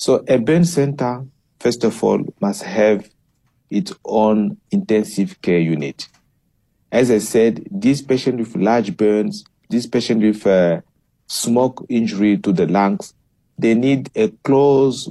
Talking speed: 135 wpm